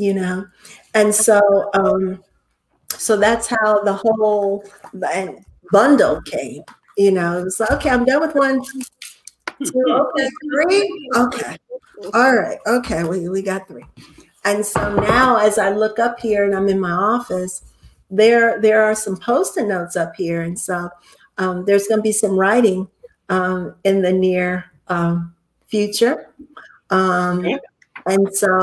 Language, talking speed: English, 150 wpm